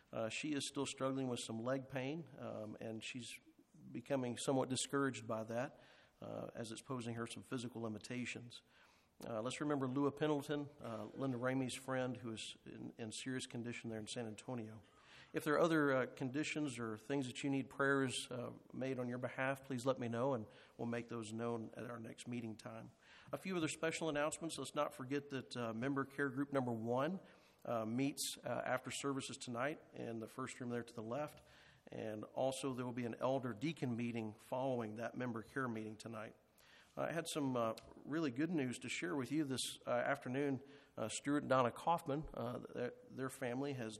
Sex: male